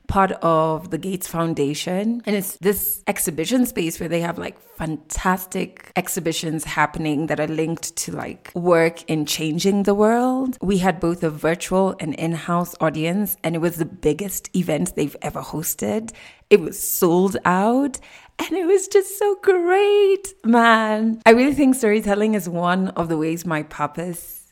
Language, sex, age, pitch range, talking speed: English, female, 20-39, 160-225 Hz, 160 wpm